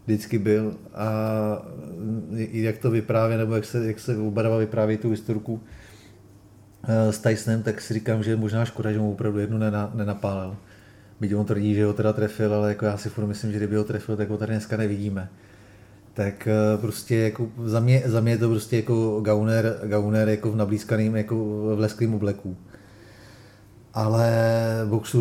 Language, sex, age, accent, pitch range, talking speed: Czech, male, 30-49, native, 105-110 Hz, 165 wpm